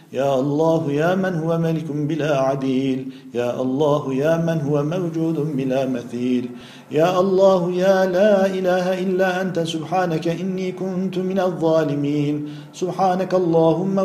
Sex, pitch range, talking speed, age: male, 145-185 Hz, 130 wpm, 50-69